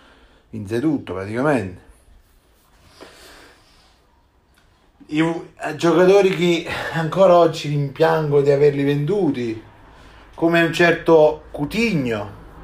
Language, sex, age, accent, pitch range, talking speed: Italian, male, 30-49, native, 105-165 Hz, 75 wpm